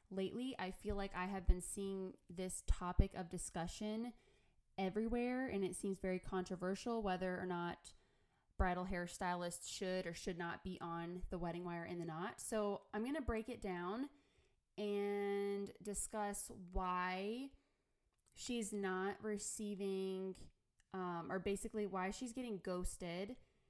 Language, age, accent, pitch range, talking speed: English, 20-39, American, 185-220 Hz, 135 wpm